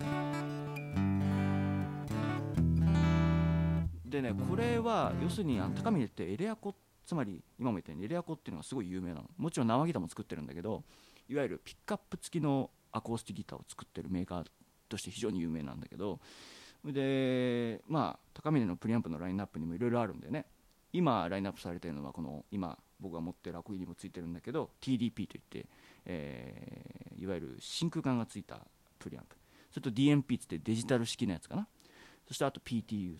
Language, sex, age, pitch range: Japanese, male, 40-59, 90-140 Hz